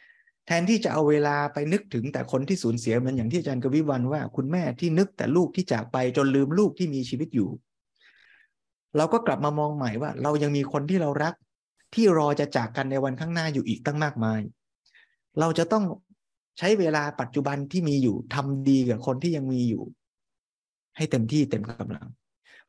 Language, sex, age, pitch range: Thai, male, 30-49, 115-150 Hz